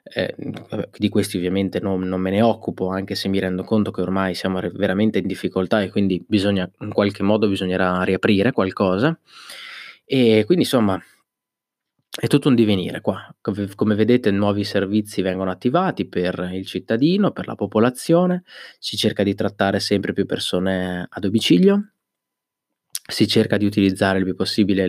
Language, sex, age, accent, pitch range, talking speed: Italian, male, 20-39, native, 95-110 Hz, 160 wpm